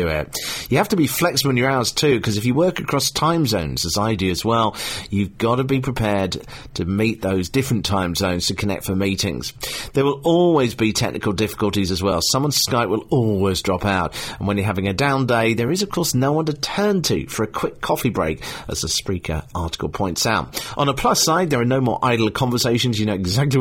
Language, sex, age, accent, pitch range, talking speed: English, male, 40-59, British, 100-140 Hz, 230 wpm